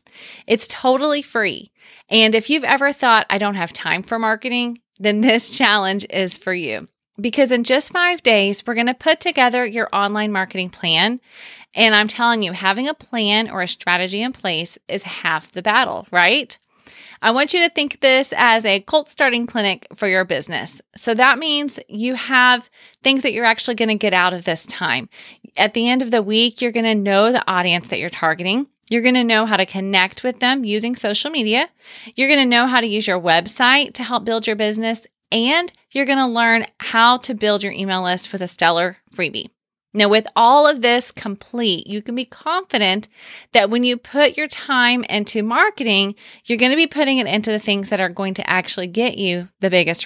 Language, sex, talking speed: English, female, 205 wpm